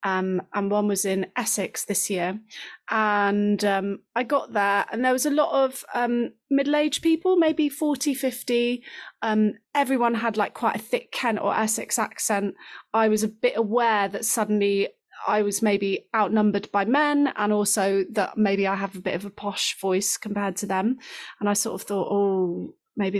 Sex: female